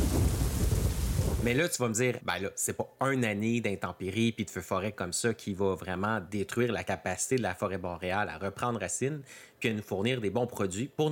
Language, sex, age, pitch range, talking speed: French, male, 30-49, 100-125 Hz, 210 wpm